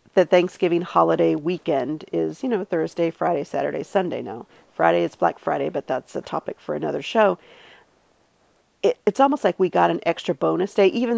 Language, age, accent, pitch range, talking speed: English, 40-59, American, 170-205 Hz, 175 wpm